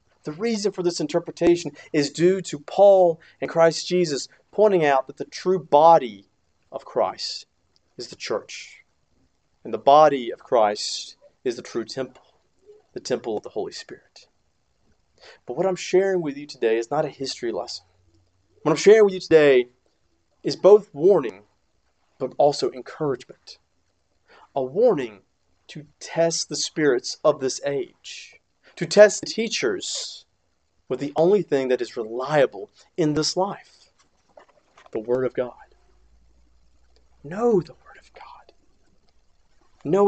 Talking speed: 140 wpm